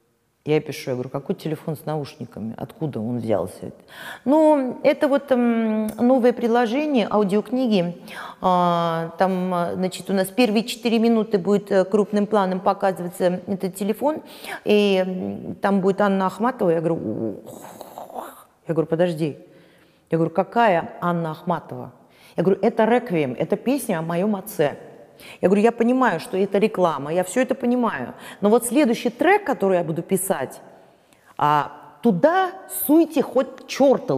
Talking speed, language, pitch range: 135 wpm, Russian, 170-240 Hz